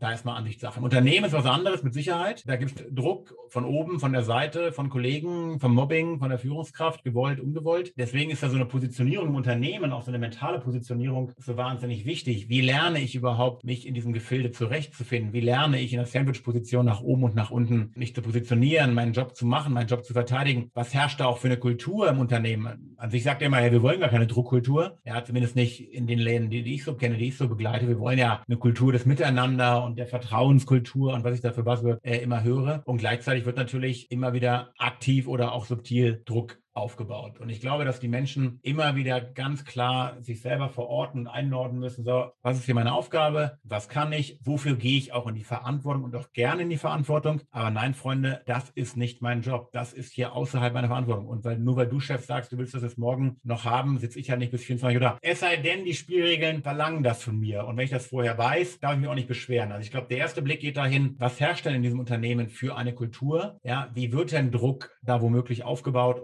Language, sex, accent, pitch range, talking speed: German, male, German, 120-135 Hz, 235 wpm